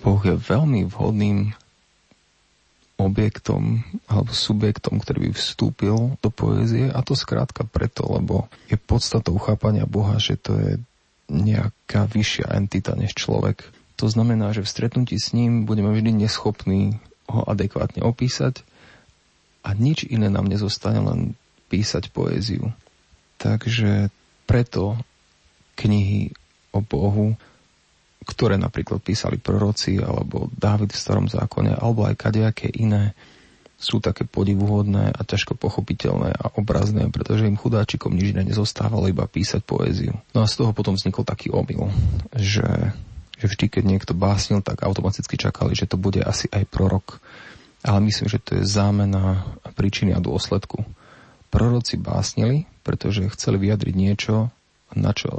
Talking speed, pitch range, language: 135 wpm, 100-115 Hz, Slovak